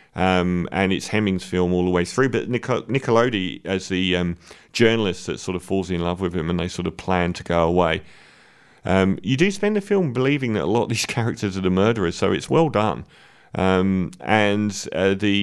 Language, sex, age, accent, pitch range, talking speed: English, male, 40-59, British, 90-105 Hz, 215 wpm